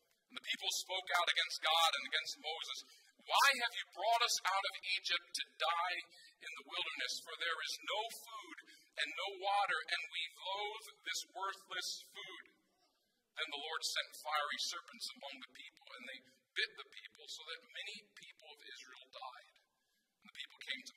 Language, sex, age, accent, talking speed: English, male, 50-69, American, 180 wpm